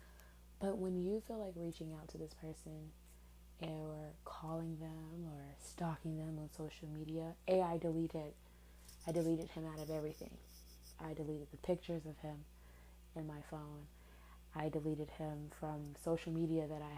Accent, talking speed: American, 160 wpm